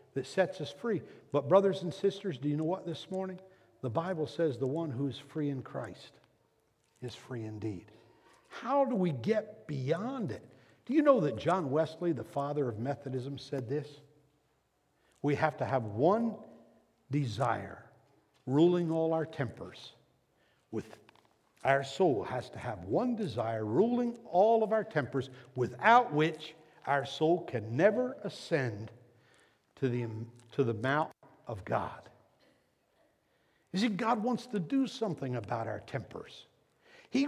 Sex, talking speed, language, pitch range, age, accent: male, 150 wpm, English, 140-230 Hz, 60-79, American